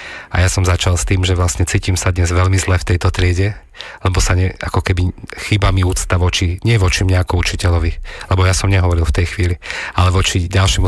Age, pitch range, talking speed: 40-59, 90-95 Hz, 220 wpm